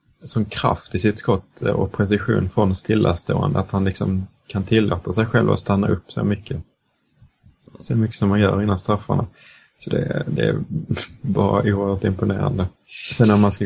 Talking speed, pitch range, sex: 170 wpm, 95-105 Hz, male